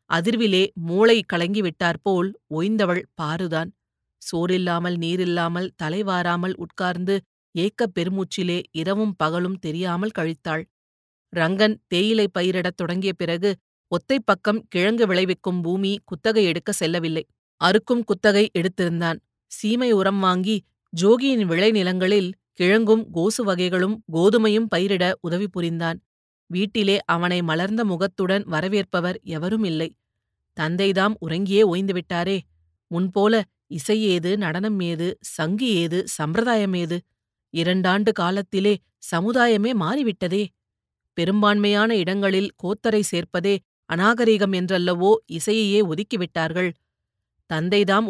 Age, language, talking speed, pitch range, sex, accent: 30-49, Tamil, 85 wpm, 170-205 Hz, female, native